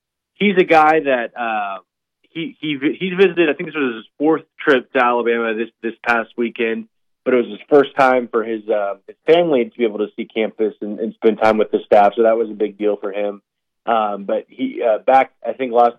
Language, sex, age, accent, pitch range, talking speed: English, male, 20-39, American, 110-140 Hz, 230 wpm